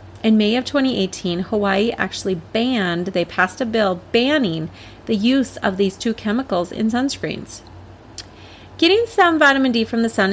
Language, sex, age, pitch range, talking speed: English, female, 30-49, 185-245 Hz, 155 wpm